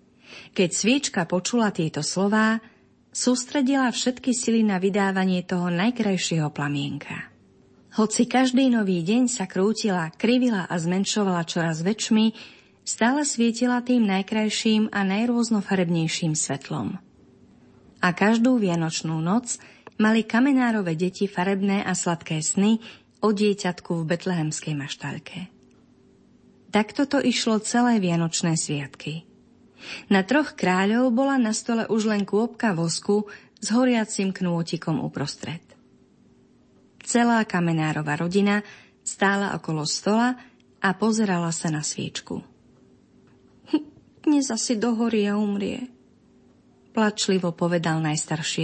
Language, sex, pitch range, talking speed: Slovak, female, 175-230 Hz, 110 wpm